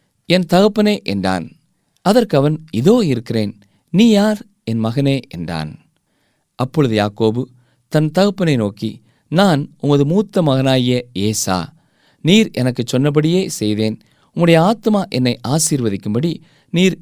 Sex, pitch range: male, 120-180 Hz